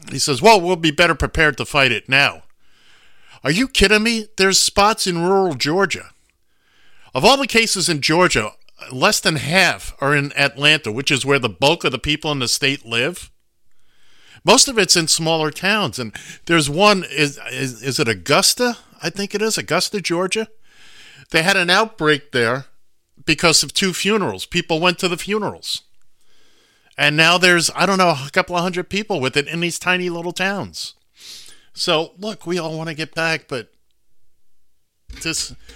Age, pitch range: 50-69, 130-185 Hz